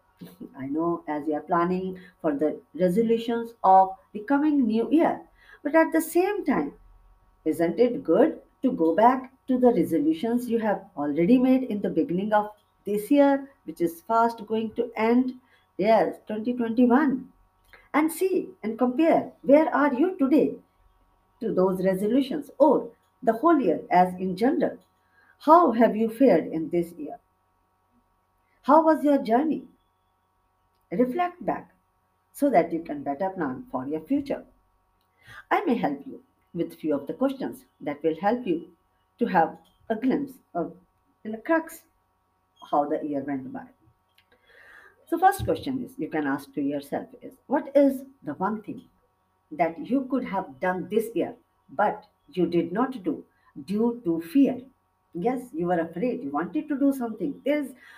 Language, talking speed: English, 155 wpm